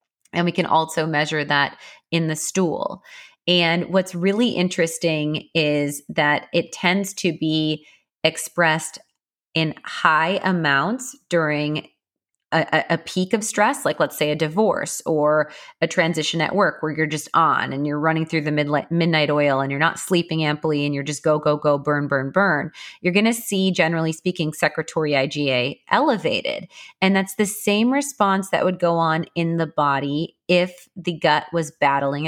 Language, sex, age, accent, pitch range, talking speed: English, female, 30-49, American, 150-185 Hz, 165 wpm